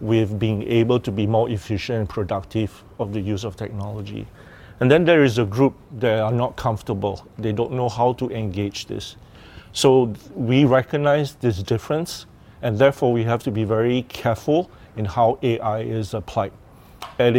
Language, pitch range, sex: English, 105-125 Hz, male